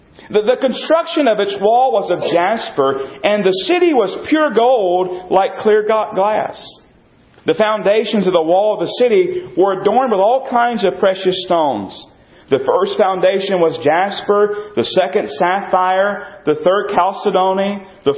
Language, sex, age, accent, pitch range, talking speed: English, male, 40-59, American, 190-265 Hz, 155 wpm